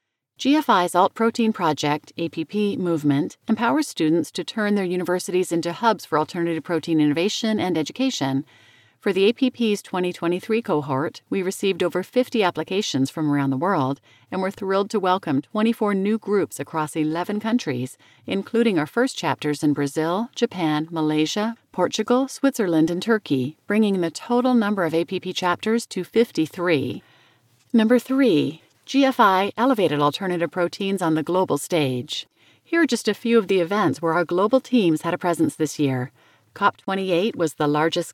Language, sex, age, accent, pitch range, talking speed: English, female, 40-59, American, 155-215 Hz, 150 wpm